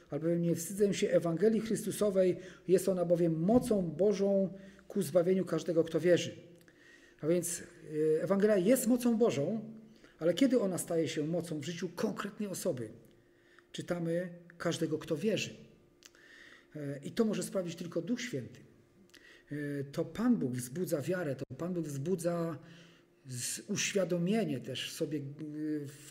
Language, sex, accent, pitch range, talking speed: Polish, male, native, 155-190 Hz, 130 wpm